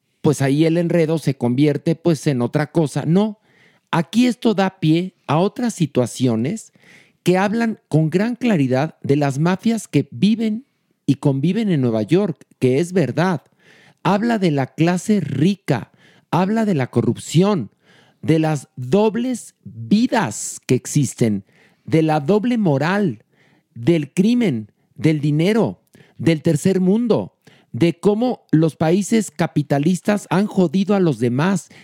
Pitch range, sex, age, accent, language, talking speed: 140-190 Hz, male, 50-69, Mexican, Spanish, 135 wpm